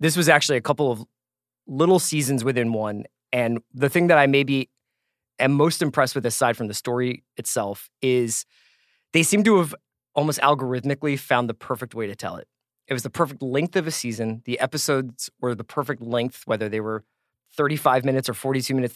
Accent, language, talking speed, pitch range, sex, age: American, English, 195 wpm, 120-150 Hz, male, 20-39